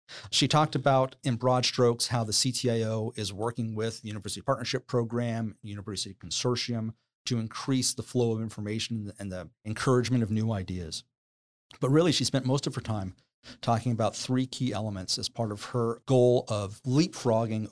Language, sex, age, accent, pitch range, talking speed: English, male, 40-59, American, 105-125 Hz, 170 wpm